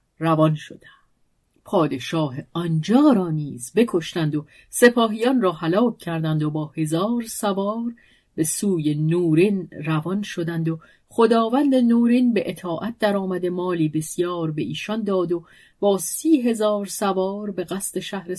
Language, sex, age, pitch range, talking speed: Persian, female, 40-59, 160-220 Hz, 125 wpm